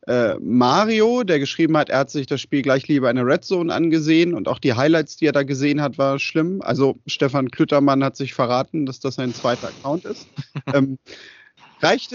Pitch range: 140-185 Hz